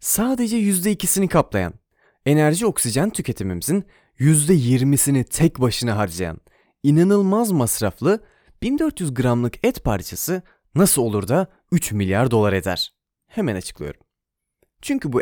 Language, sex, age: Turkish, male, 30-49